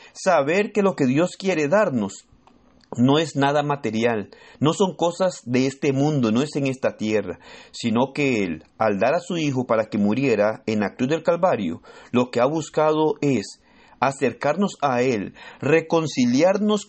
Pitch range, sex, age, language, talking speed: 125-170 Hz, male, 40-59, Spanish, 165 wpm